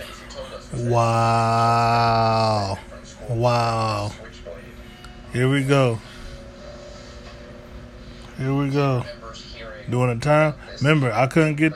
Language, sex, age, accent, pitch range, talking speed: English, male, 20-39, American, 120-155 Hz, 75 wpm